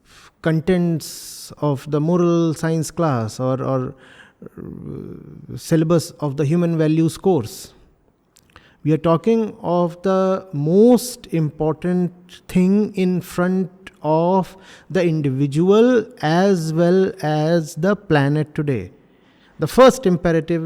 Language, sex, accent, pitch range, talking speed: English, male, Indian, 155-195 Hz, 105 wpm